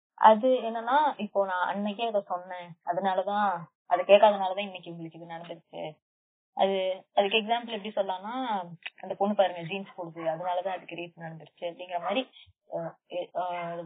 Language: Tamil